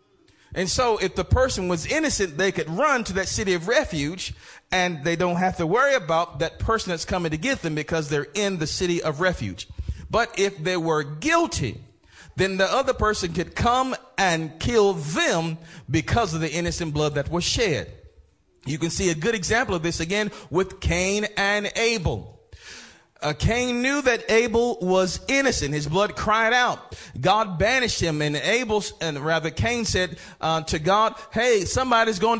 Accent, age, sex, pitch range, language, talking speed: American, 40-59, male, 165-230 Hz, English, 180 wpm